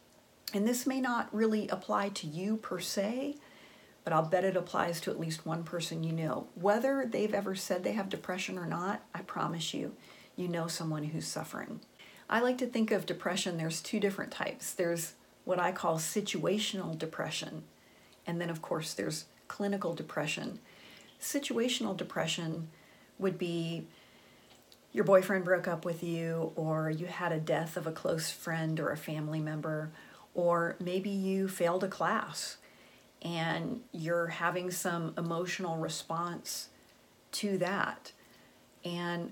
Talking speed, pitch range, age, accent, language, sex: 155 wpm, 165-200 Hz, 40-59, American, English, female